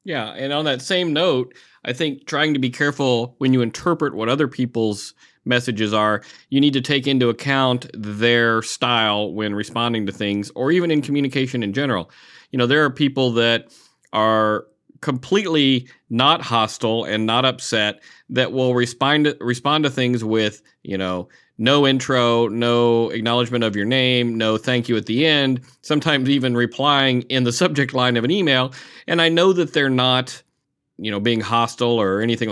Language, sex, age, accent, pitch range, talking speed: English, male, 40-59, American, 115-140 Hz, 175 wpm